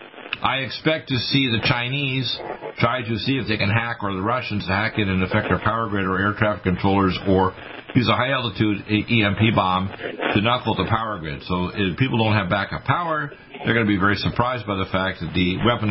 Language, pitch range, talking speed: English, 95-120 Hz, 215 wpm